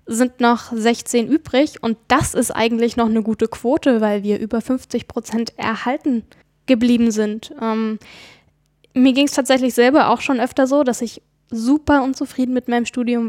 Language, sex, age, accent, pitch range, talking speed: German, female, 10-29, German, 225-265 Hz, 165 wpm